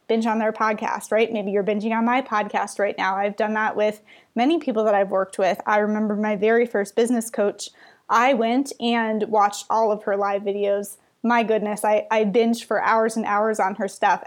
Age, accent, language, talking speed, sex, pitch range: 20-39, American, English, 215 wpm, female, 210-255 Hz